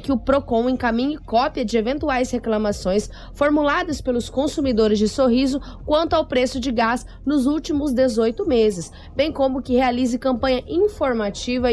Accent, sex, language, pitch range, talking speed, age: Brazilian, female, Portuguese, 220-280 Hz, 145 wpm, 10-29